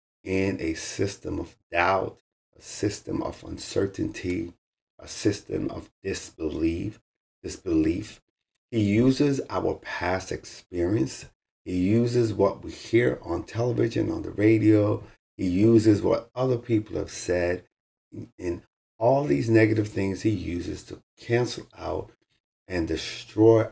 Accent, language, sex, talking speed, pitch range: American, English, male, 120 wpm, 95-120 Hz